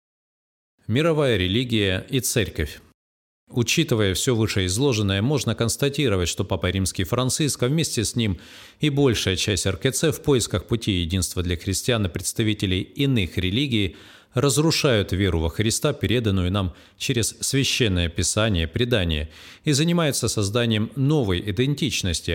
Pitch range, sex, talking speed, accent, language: 95-130 Hz, male, 120 wpm, native, Russian